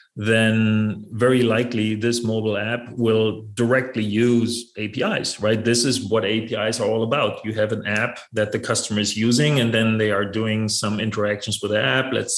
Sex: male